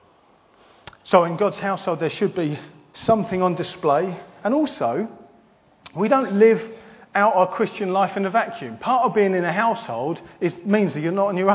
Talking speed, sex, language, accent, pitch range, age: 180 wpm, male, English, British, 155-210 Hz, 40-59